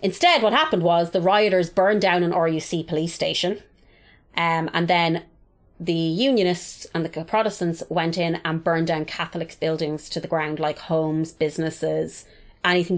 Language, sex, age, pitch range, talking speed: English, female, 30-49, 155-180 Hz, 155 wpm